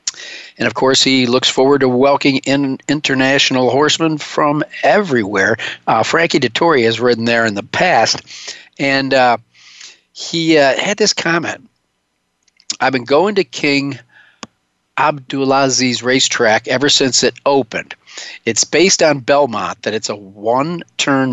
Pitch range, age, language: 120-145 Hz, 50-69, English